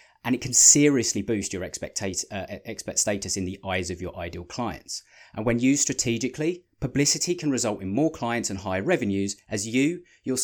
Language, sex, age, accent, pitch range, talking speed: English, male, 20-39, British, 95-130 Hz, 185 wpm